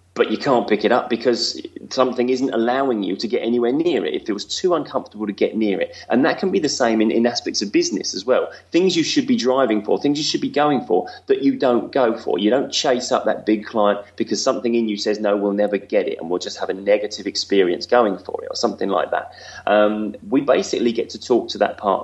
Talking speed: 260 wpm